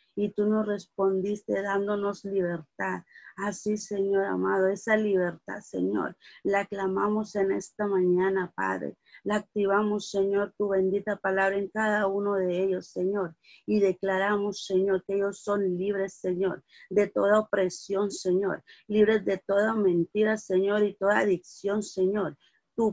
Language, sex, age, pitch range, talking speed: Spanish, female, 40-59, 185-205 Hz, 135 wpm